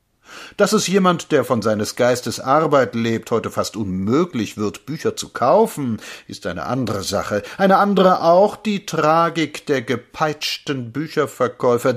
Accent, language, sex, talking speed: German, German, male, 140 wpm